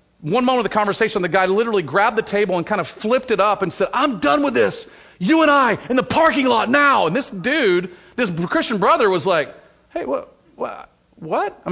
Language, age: English, 40-59